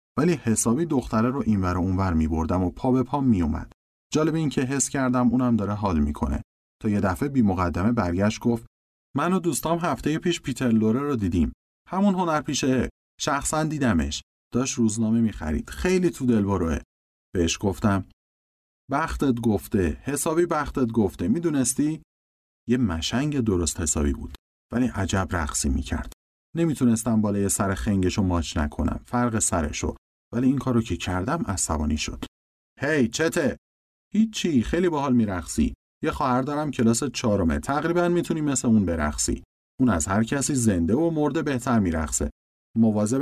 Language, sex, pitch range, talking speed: Persian, male, 85-130 Hz, 155 wpm